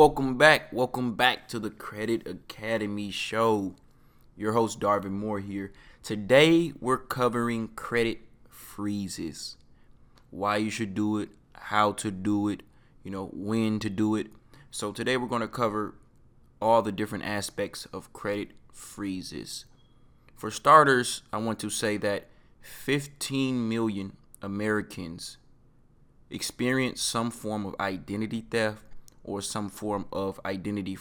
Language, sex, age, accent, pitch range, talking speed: English, male, 20-39, American, 100-125 Hz, 130 wpm